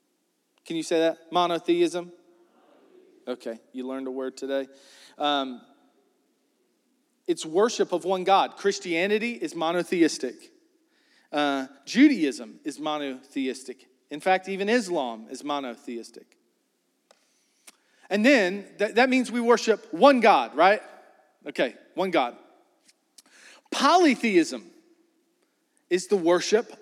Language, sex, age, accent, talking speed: English, male, 40-59, American, 105 wpm